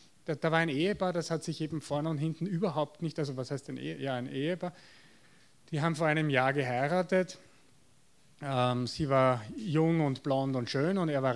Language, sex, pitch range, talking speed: German, male, 135-185 Hz, 205 wpm